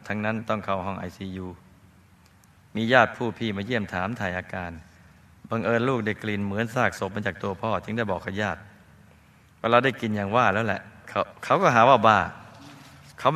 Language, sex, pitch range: Thai, male, 95-115 Hz